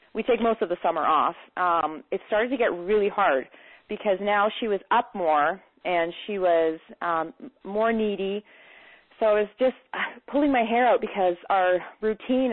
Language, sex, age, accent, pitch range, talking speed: English, female, 30-49, American, 170-220 Hz, 175 wpm